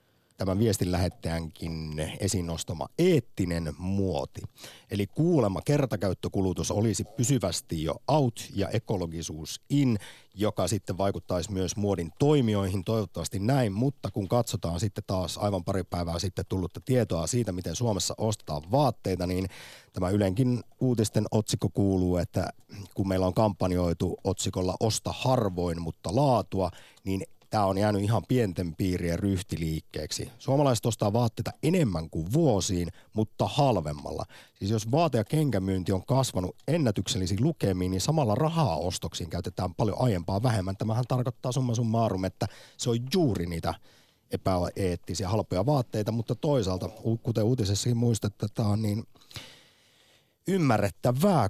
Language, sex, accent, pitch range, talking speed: Finnish, male, native, 95-125 Hz, 125 wpm